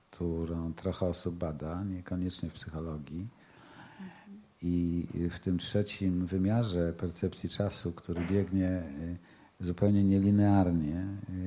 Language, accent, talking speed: Polish, native, 95 wpm